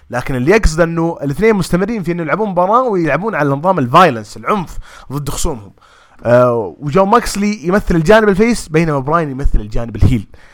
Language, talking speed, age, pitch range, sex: English, 155 wpm, 20-39, 120-180 Hz, male